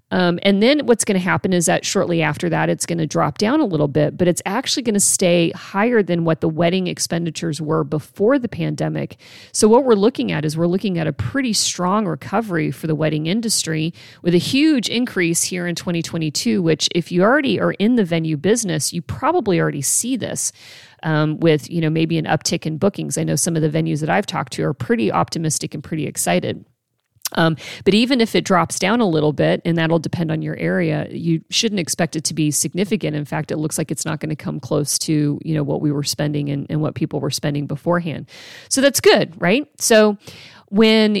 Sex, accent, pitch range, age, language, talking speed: female, American, 160-205 Hz, 40-59, English, 225 wpm